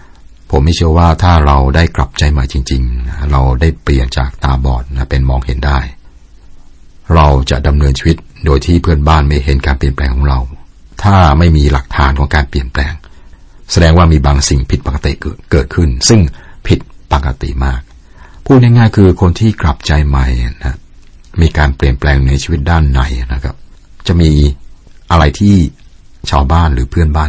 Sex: male